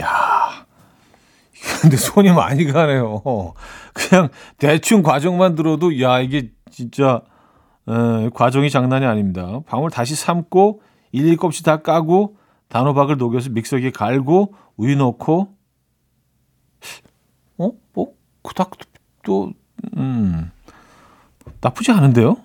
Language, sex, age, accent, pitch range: Korean, male, 40-59, native, 115-160 Hz